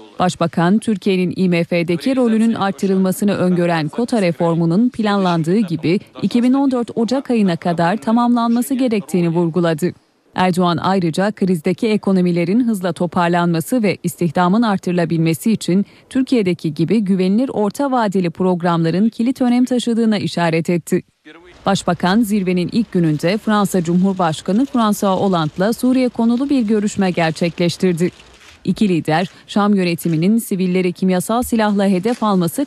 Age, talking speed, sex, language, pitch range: 30-49, 110 wpm, female, Turkish, 170-215 Hz